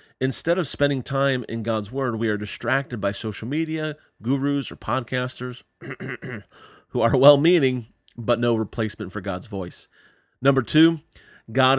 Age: 40-59